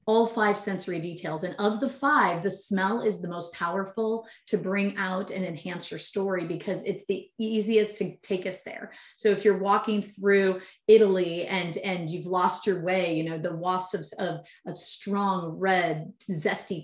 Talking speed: 180 wpm